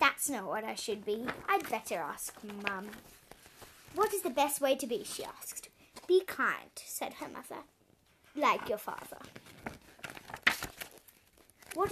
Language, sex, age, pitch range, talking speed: English, female, 10-29, 240-320 Hz, 140 wpm